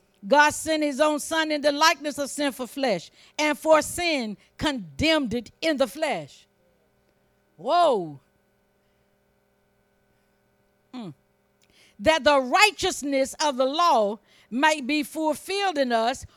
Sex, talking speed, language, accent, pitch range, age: female, 120 wpm, English, American, 180-290 Hz, 50-69